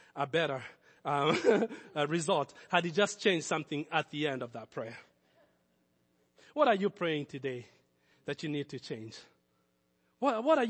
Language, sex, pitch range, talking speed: English, male, 140-220 Hz, 155 wpm